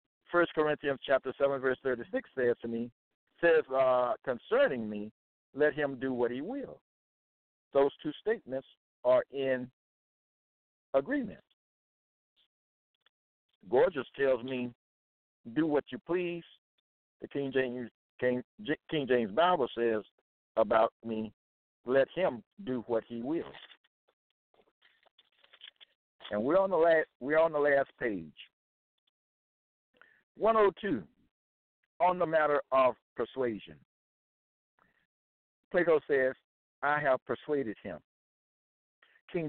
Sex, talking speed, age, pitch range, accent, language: male, 110 wpm, 60-79, 115-160 Hz, American, English